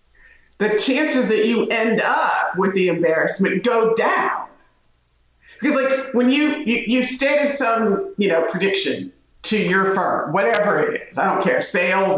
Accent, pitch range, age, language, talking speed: American, 170-245 Hz, 40-59, English, 160 wpm